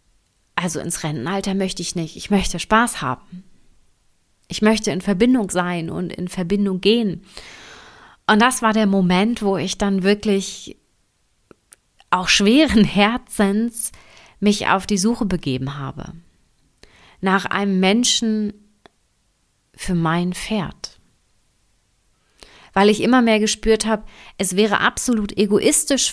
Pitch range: 185-215 Hz